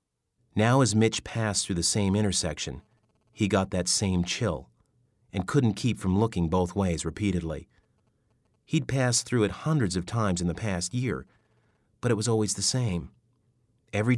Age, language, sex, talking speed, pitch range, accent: 40-59, English, male, 165 wpm, 90-115 Hz, American